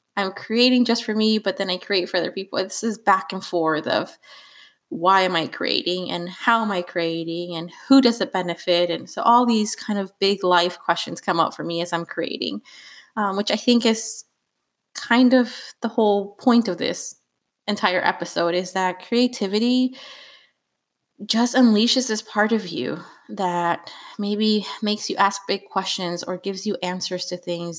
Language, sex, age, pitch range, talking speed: English, female, 20-39, 180-220 Hz, 180 wpm